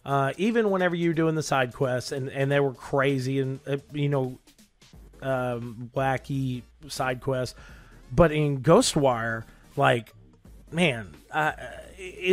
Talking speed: 130 wpm